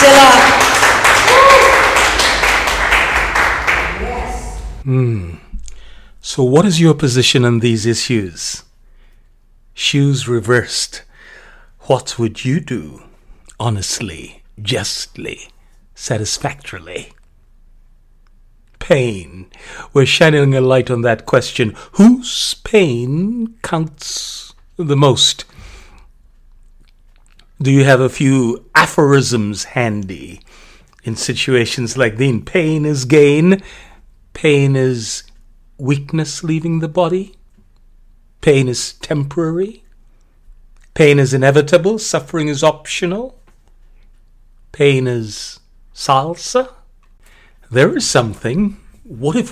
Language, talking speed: English, 80 wpm